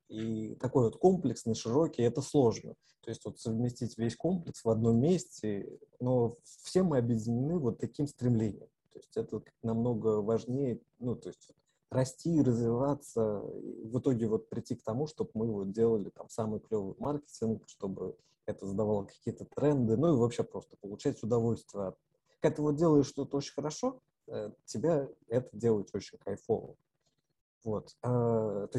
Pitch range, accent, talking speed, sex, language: 115-150 Hz, native, 150 wpm, male, Russian